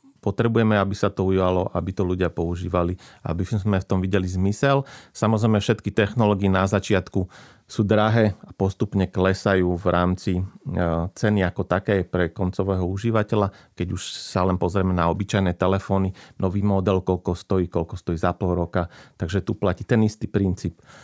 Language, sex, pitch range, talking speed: Slovak, male, 95-105 Hz, 160 wpm